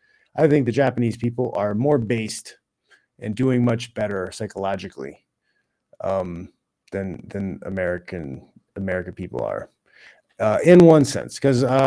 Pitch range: 100-130 Hz